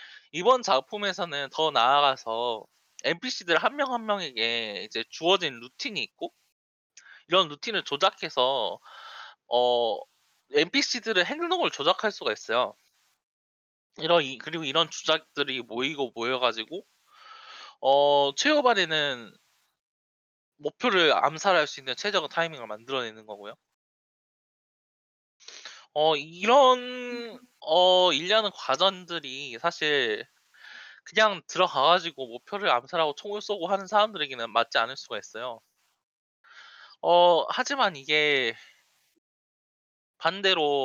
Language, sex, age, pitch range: Korean, male, 20-39, 125-205 Hz